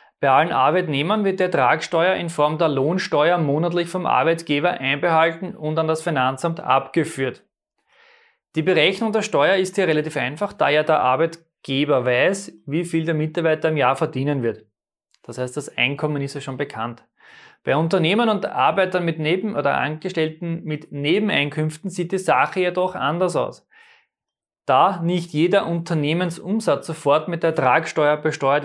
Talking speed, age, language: 155 wpm, 20-39, German